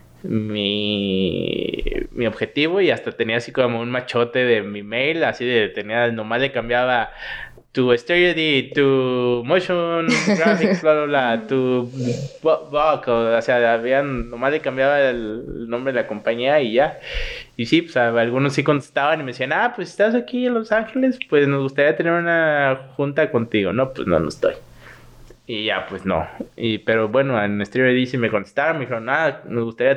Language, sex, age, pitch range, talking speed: Spanish, male, 20-39, 115-150 Hz, 170 wpm